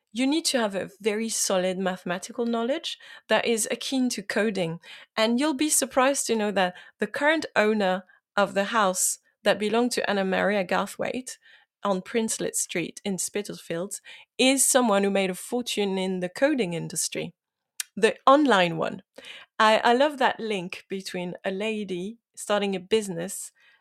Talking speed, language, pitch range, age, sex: 155 wpm, English, 185-235 Hz, 30-49, female